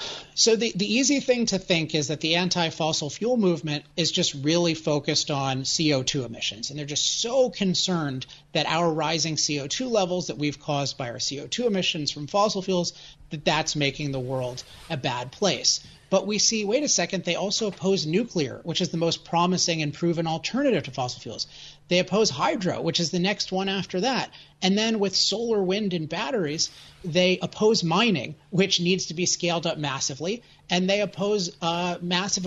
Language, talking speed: English, 185 wpm